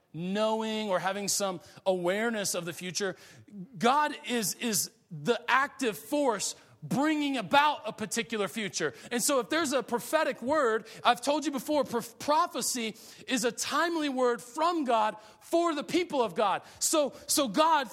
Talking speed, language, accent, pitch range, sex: 155 wpm, English, American, 250-335 Hz, male